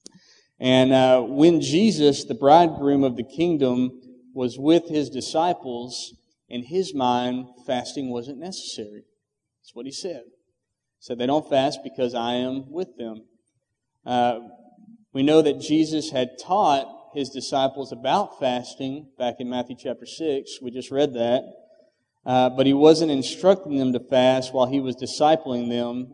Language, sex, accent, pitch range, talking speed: English, male, American, 125-155 Hz, 150 wpm